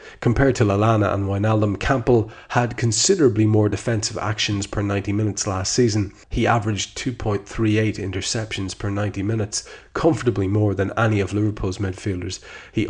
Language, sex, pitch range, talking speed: English, male, 100-115 Hz, 145 wpm